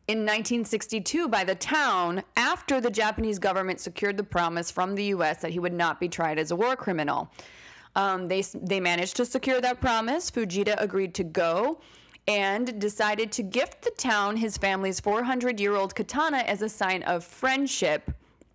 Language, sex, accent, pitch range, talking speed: English, female, American, 180-240 Hz, 170 wpm